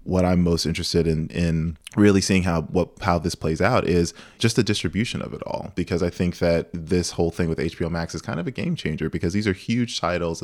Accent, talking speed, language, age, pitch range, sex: American, 240 wpm, English, 20-39, 85-105 Hz, male